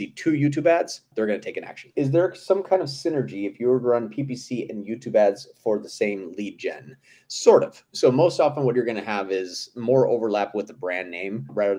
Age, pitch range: 30-49, 105-140 Hz